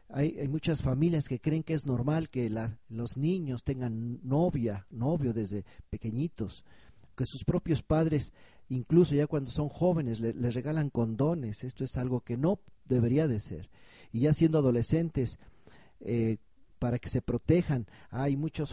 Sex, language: male, Spanish